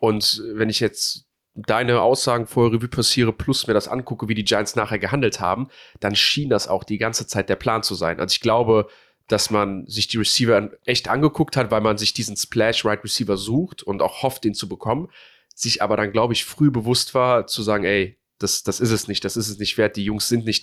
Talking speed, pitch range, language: 225 wpm, 105-120 Hz, German